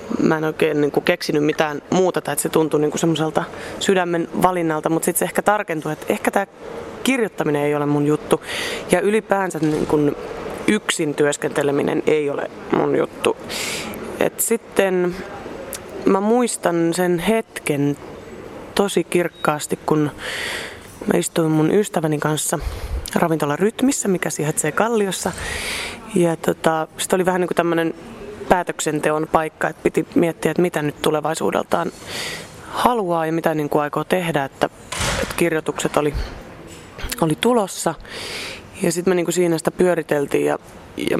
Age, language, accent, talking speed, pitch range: 20-39, Finnish, native, 130 wpm, 150-185 Hz